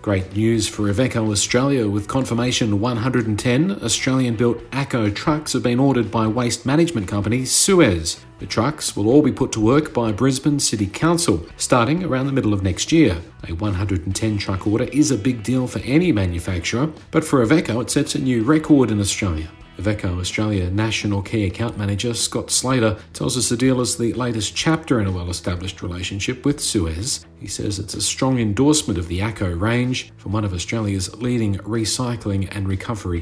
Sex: male